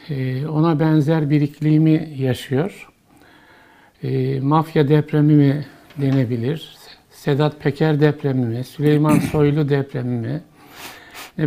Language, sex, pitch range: Turkish, male, 140-155 Hz